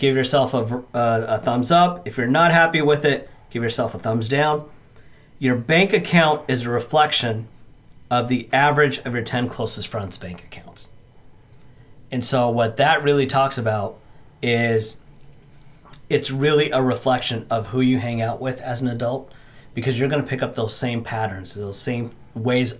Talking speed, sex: 175 wpm, male